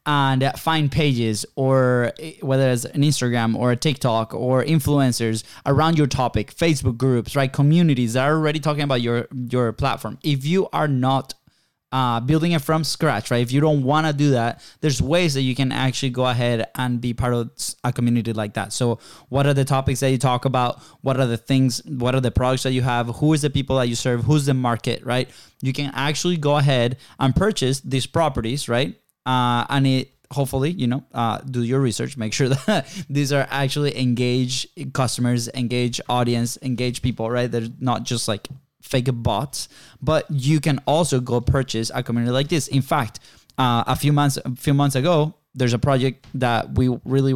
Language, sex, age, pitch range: English, male, 20-39, 120-145 Hz